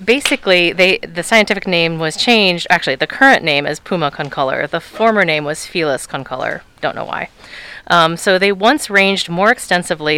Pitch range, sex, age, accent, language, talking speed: 150-200 Hz, female, 30-49, American, English, 175 wpm